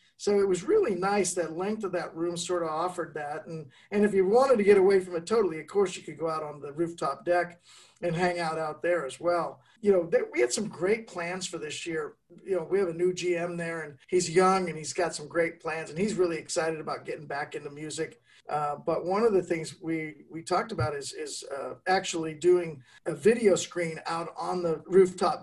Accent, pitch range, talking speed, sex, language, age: American, 160-190 Hz, 240 wpm, male, English, 50-69